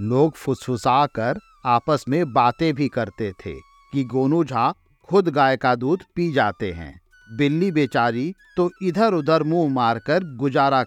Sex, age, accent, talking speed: male, 50-69, native, 145 wpm